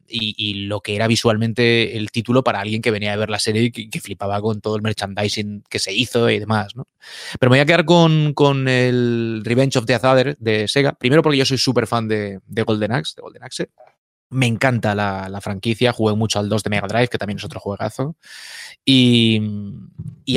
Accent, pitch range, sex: Spanish, 110-130 Hz, male